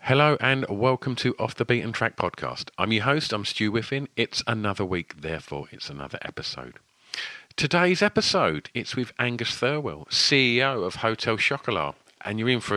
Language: English